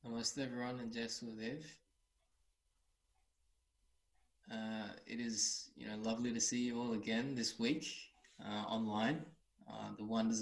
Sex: male